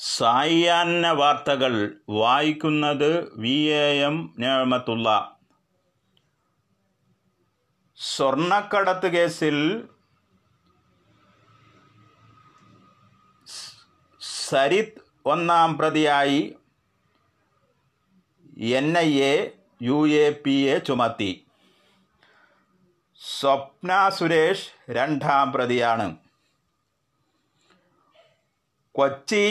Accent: native